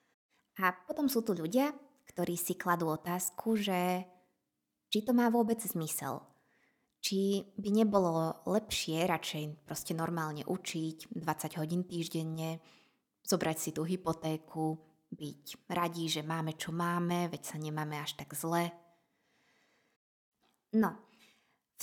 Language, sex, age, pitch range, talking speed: Slovak, female, 20-39, 160-215 Hz, 120 wpm